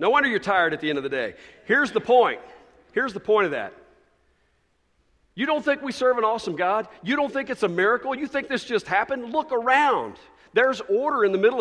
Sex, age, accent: male, 50-69, American